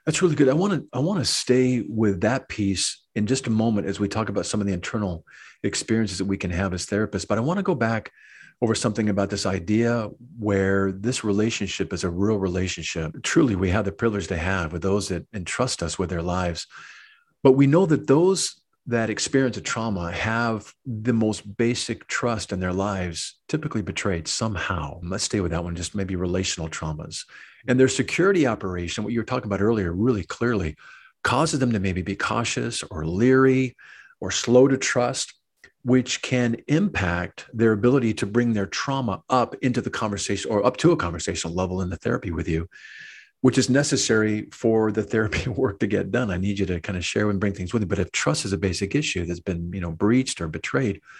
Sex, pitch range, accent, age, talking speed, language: male, 95-130 Hz, American, 50-69, 210 wpm, English